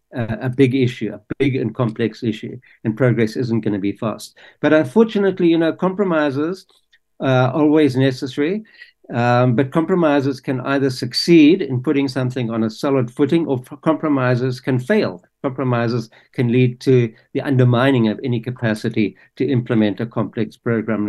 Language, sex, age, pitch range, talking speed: English, male, 60-79, 115-140 Hz, 155 wpm